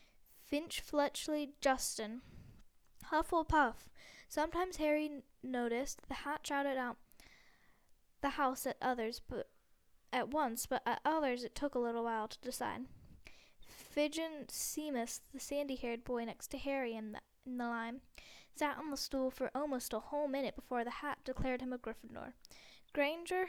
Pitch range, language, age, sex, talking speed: 240-290 Hz, English, 10-29, female, 145 wpm